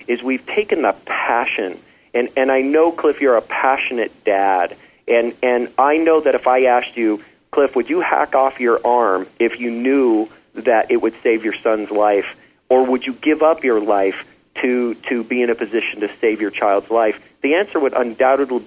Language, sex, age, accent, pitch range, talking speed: English, male, 40-59, American, 110-140 Hz, 200 wpm